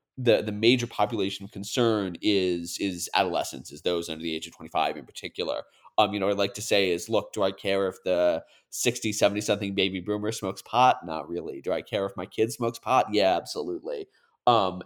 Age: 30-49